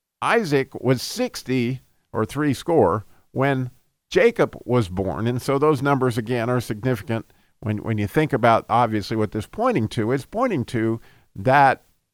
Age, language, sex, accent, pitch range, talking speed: 50-69, English, male, American, 120-150 Hz, 155 wpm